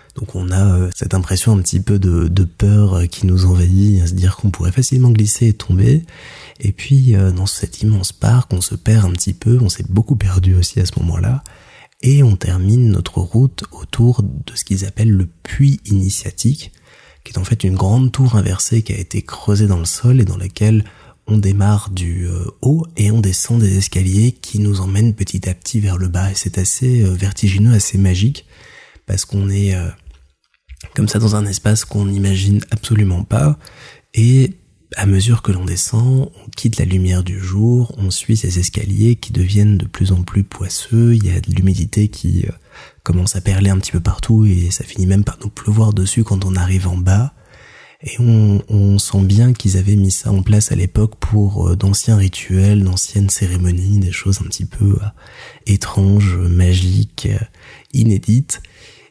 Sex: male